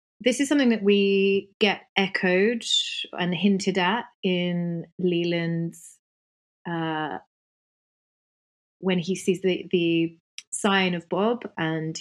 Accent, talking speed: British, 110 wpm